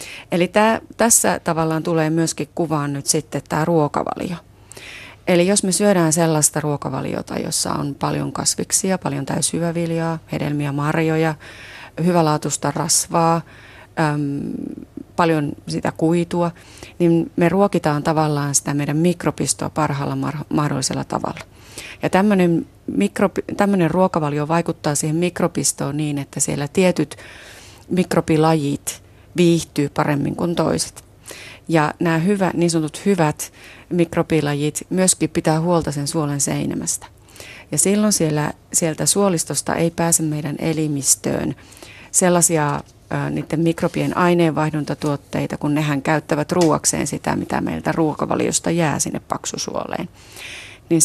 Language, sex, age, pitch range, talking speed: Finnish, female, 30-49, 145-170 Hz, 110 wpm